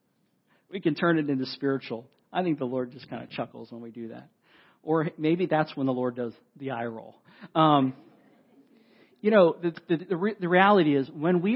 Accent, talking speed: American, 190 wpm